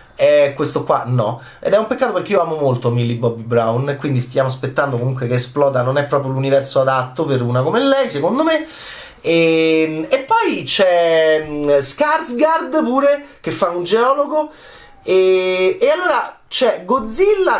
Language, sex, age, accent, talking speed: Italian, male, 30-49, native, 160 wpm